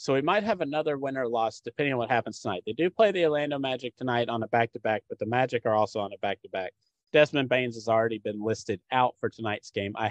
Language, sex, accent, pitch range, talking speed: English, male, American, 110-155 Hz, 250 wpm